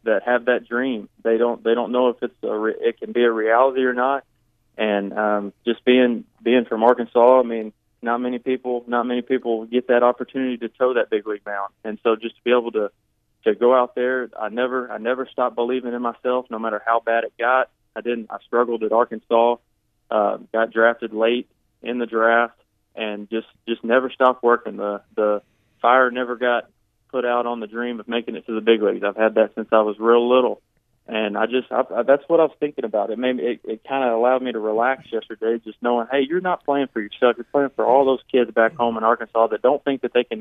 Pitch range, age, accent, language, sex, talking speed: 115-130 Hz, 20-39, American, English, male, 235 wpm